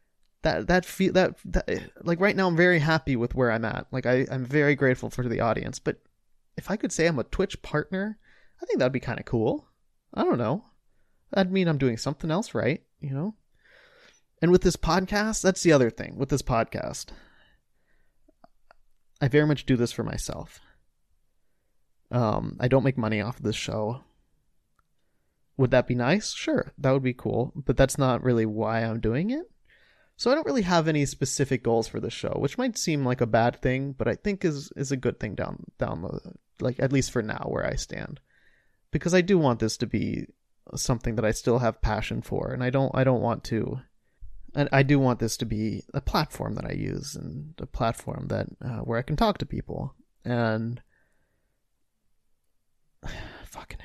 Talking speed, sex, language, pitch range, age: 195 wpm, male, English, 120-165 Hz, 20-39